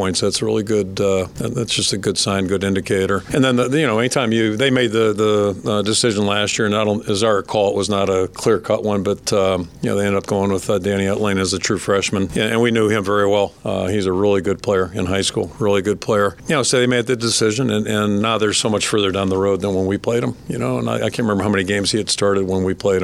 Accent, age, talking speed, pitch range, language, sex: American, 50-69, 290 wpm, 95-105 Hz, English, male